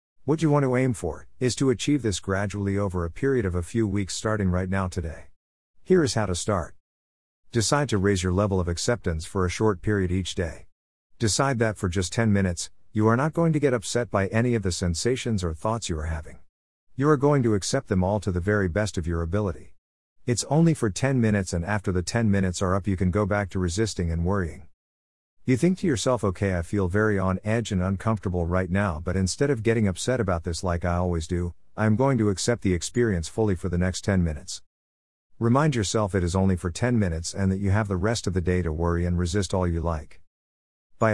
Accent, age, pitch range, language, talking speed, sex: American, 50-69, 85-110 Hz, English, 235 wpm, male